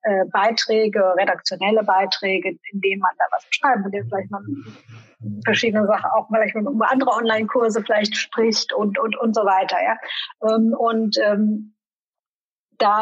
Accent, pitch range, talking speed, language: German, 210-255 Hz, 145 wpm, German